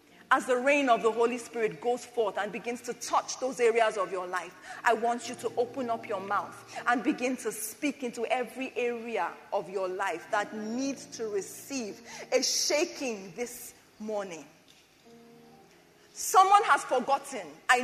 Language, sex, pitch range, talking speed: English, female, 235-335 Hz, 160 wpm